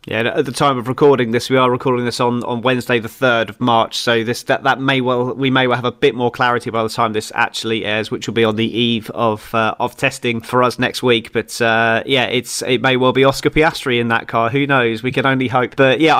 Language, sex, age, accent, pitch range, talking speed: English, male, 30-49, British, 110-130 Hz, 270 wpm